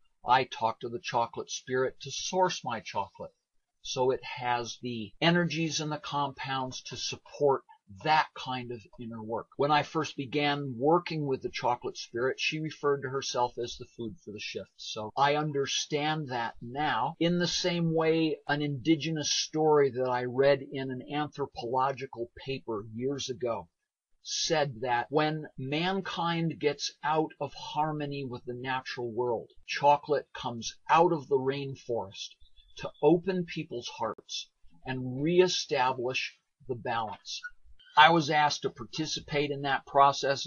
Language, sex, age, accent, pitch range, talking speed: English, male, 50-69, American, 125-155 Hz, 145 wpm